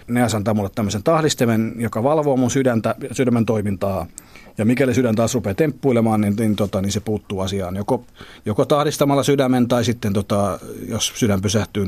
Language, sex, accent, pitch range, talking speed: Finnish, male, native, 100-125 Hz, 170 wpm